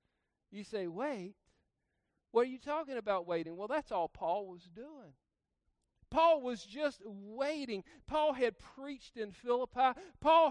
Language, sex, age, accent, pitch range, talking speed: English, male, 50-69, American, 225-285 Hz, 145 wpm